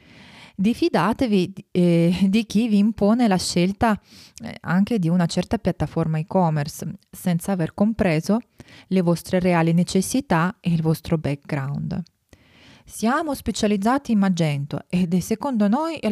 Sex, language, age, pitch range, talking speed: female, Italian, 20-39, 175-220 Hz, 125 wpm